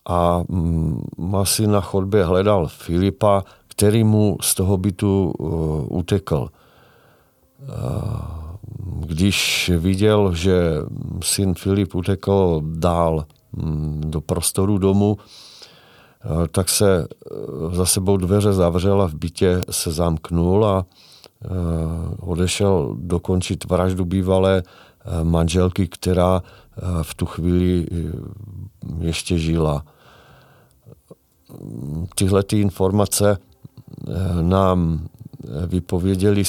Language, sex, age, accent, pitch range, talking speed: Czech, male, 40-59, native, 85-100 Hz, 80 wpm